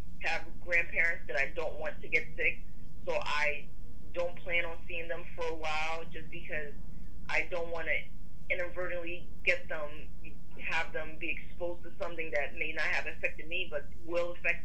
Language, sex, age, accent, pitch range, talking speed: English, female, 20-39, American, 150-175 Hz, 175 wpm